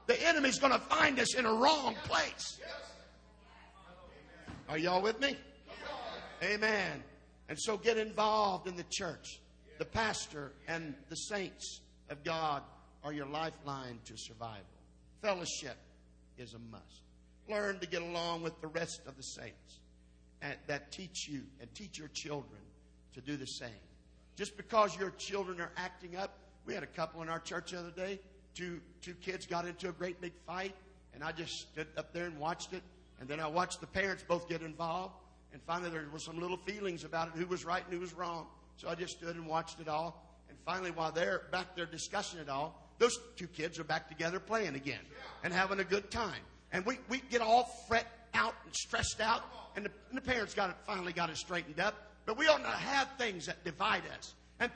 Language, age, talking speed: English, 50-69, 200 wpm